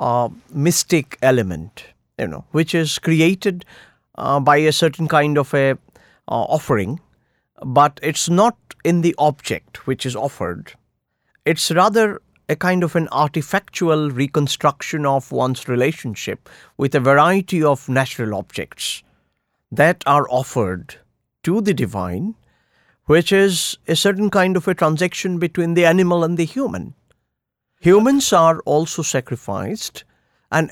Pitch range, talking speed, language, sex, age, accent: 135-180 Hz, 135 wpm, English, male, 50-69, Indian